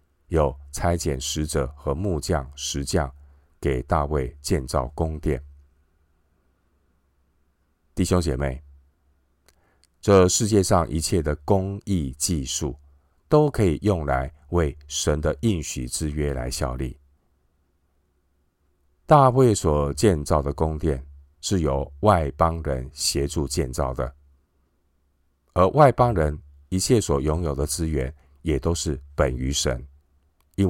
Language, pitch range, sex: Chinese, 70-80 Hz, male